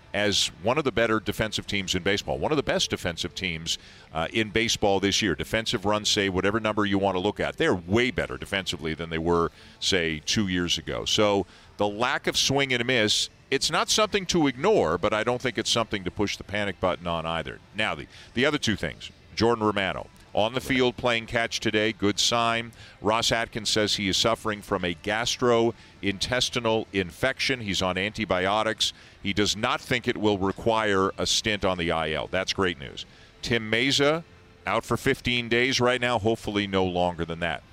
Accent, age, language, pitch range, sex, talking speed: American, 50-69, English, 95-115 Hz, male, 195 wpm